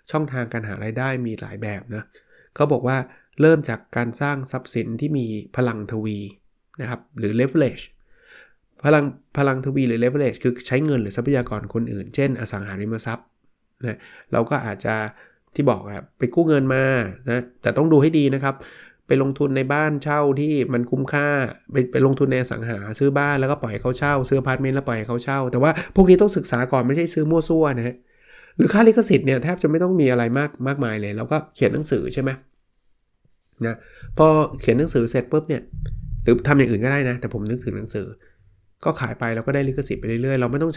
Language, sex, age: Thai, male, 20-39